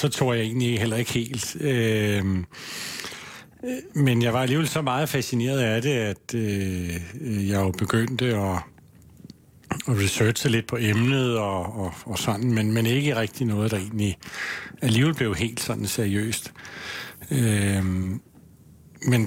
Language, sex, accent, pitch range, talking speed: Danish, male, native, 110-135 Hz, 120 wpm